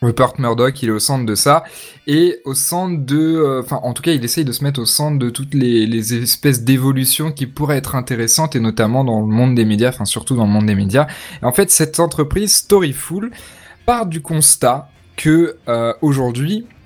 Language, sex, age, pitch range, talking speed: French, male, 20-39, 110-145 Hz, 215 wpm